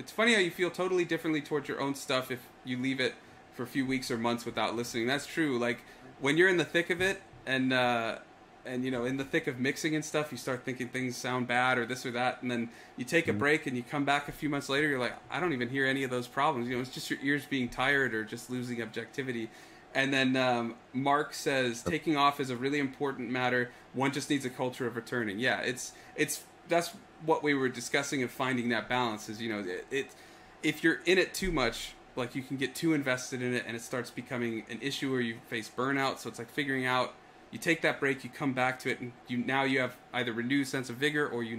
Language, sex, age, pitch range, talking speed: English, male, 30-49, 120-140 Hz, 255 wpm